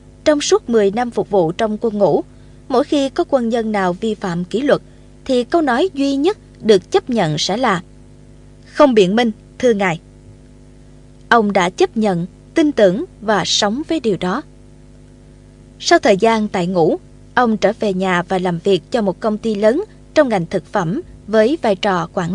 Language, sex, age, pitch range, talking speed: Vietnamese, female, 20-39, 195-285 Hz, 190 wpm